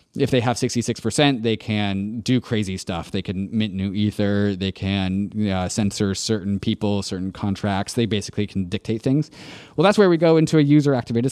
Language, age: English, 20-39